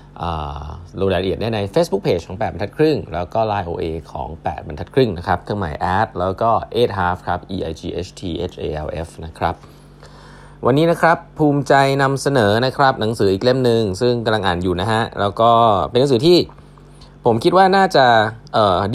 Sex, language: male, Thai